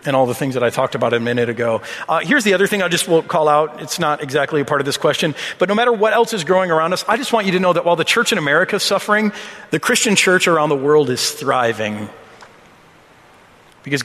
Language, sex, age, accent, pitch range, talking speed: English, male, 40-59, American, 140-170 Hz, 260 wpm